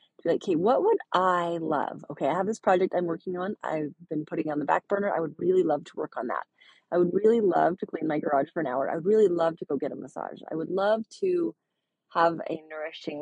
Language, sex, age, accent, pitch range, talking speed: English, female, 30-49, American, 160-205 Hz, 255 wpm